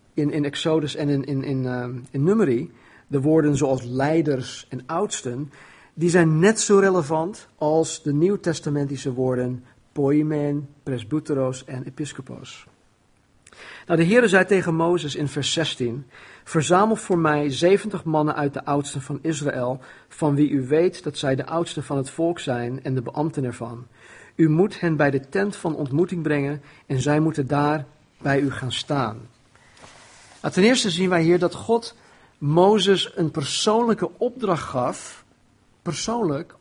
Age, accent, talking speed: 50-69, Dutch, 155 wpm